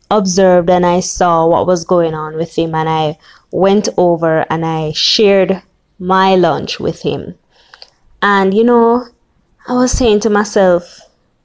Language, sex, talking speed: English, female, 150 wpm